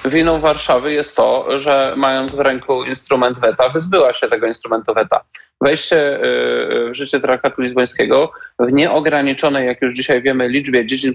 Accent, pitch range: native, 125-145 Hz